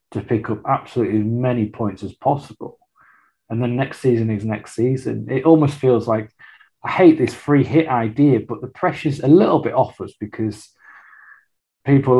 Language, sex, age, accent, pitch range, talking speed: English, male, 30-49, British, 105-125 Hz, 175 wpm